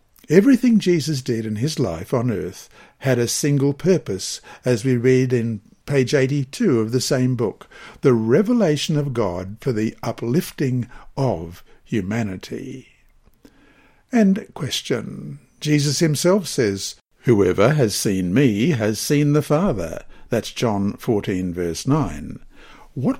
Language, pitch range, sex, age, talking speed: English, 110-150 Hz, male, 60-79, 130 wpm